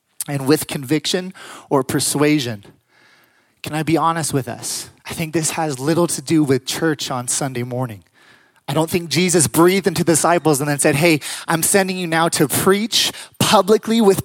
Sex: male